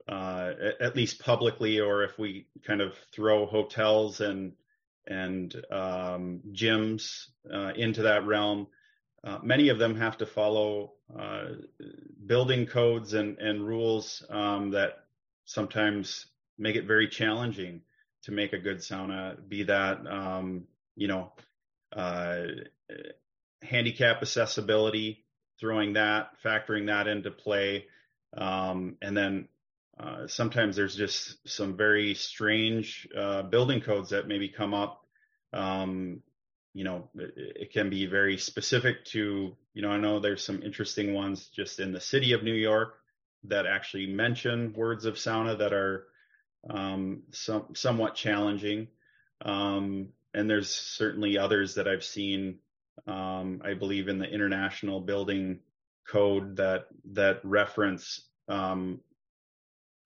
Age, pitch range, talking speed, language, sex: 30-49, 95-110 Hz, 130 wpm, English, male